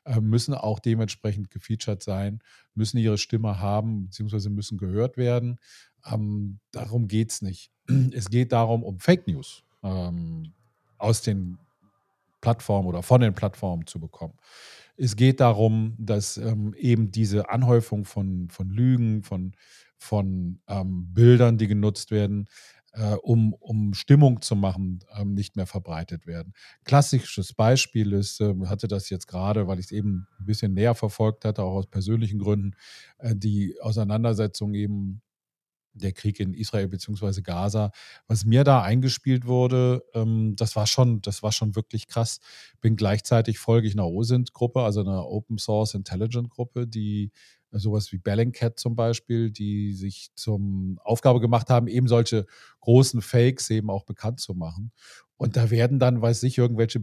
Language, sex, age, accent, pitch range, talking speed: German, male, 40-59, German, 100-115 Hz, 150 wpm